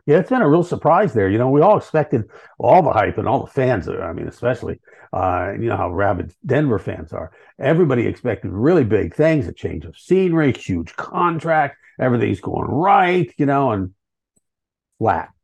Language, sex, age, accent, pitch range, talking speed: English, male, 50-69, American, 105-150 Hz, 185 wpm